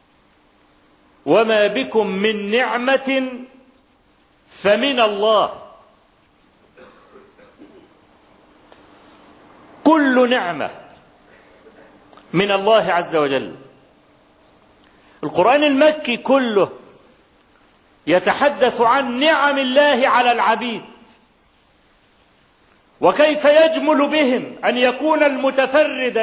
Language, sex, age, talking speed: Arabic, male, 40-59, 60 wpm